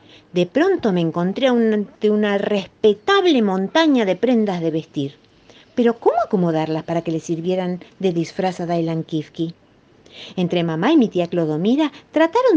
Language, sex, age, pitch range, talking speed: Spanish, female, 50-69, 155-230 Hz, 145 wpm